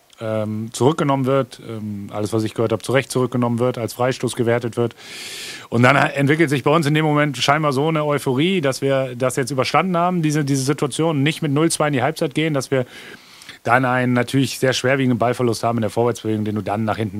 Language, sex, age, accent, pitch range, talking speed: German, male, 30-49, German, 115-140 Hz, 210 wpm